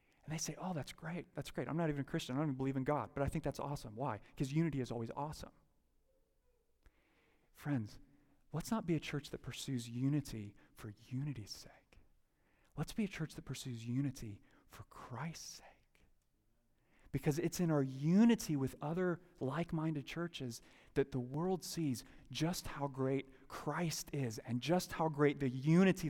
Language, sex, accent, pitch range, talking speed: English, male, American, 125-160 Hz, 170 wpm